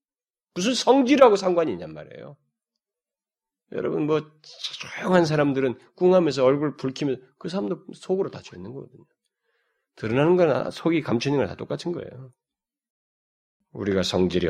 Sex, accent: male, native